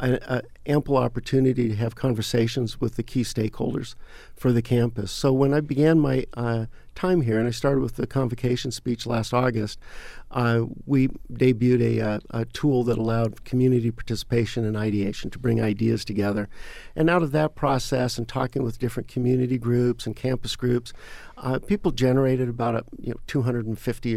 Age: 50-69